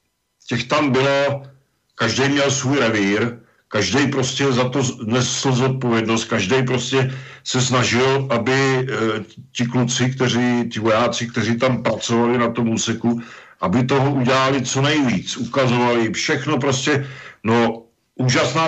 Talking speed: 130 wpm